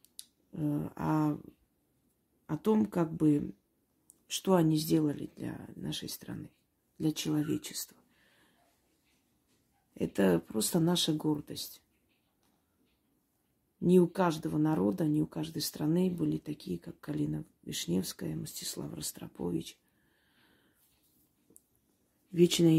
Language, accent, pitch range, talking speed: Russian, native, 150-170 Hz, 90 wpm